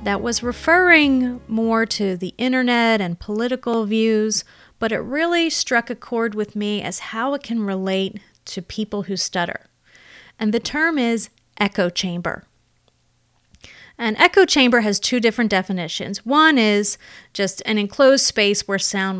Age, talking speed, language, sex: 30-49, 150 wpm, English, female